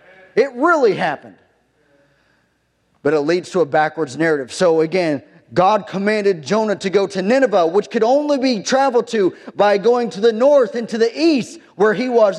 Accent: American